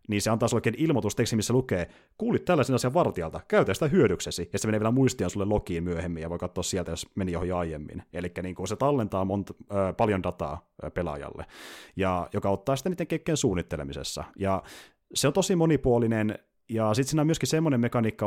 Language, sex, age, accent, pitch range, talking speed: Finnish, male, 30-49, native, 95-115 Hz, 190 wpm